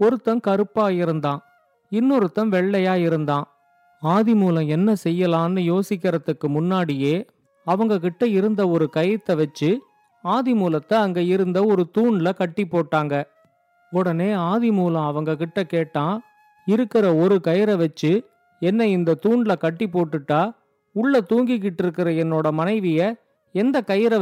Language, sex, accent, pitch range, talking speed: Tamil, male, native, 165-210 Hz, 110 wpm